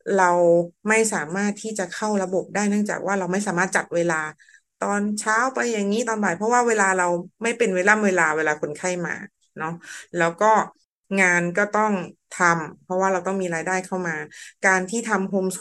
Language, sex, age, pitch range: Thai, female, 30-49, 180-220 Hz